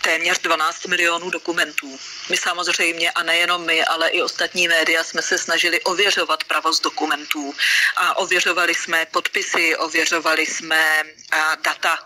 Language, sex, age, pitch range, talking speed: Slovak, female, 40-59, 165-185 Hz, 130 wpm